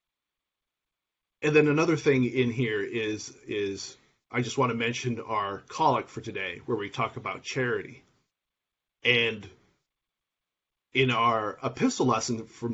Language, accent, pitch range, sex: English, American, 115-130 Hz, male